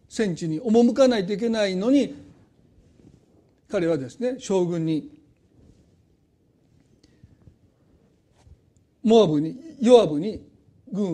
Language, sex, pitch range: Japanese, male, 170-240 Hz